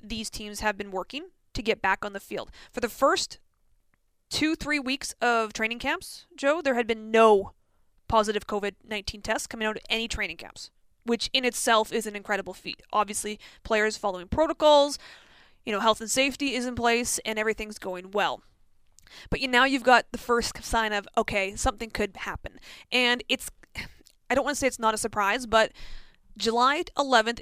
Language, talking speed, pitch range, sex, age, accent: English, 180 wpm, 210-260 Hz, female, 20-39, American